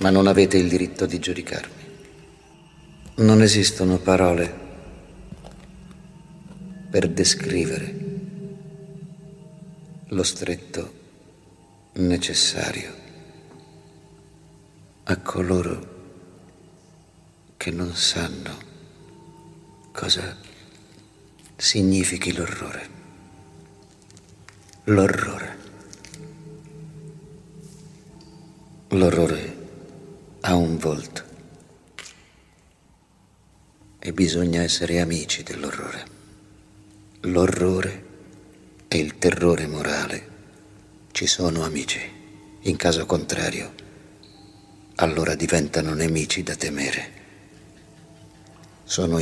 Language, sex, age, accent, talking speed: Italian, male, 50-69, native, 60 wpm